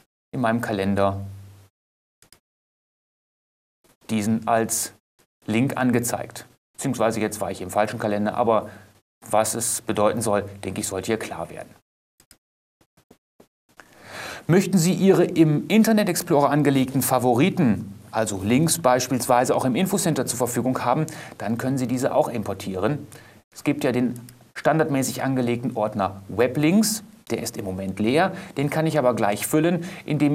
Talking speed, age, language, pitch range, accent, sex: 135 wpm, 30-49, German, 105-135 Hz, German, male